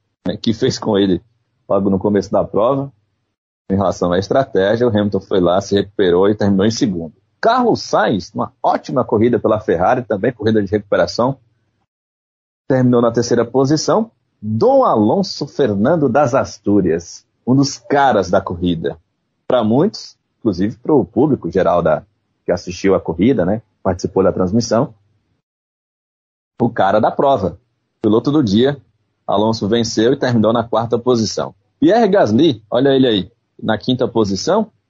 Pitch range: 100-130 Hz